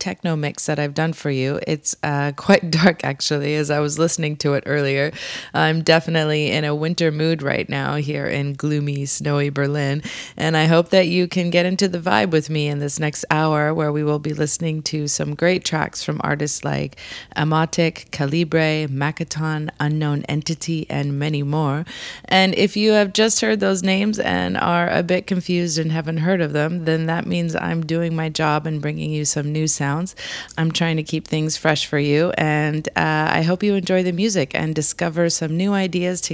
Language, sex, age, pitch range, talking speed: English, female, 20-39, 145-170 Hz, 200 wpm